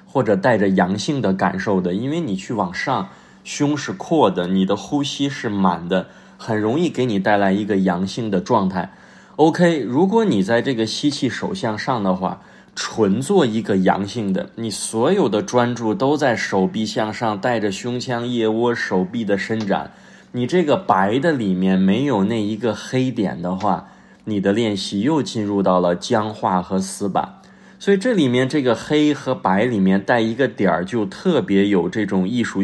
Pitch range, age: 95-130 Hz, 20-39